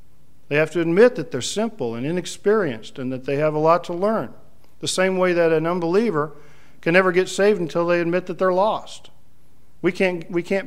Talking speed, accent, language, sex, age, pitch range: 210 wpm, American, English, male, 50-69, 135-170 Hz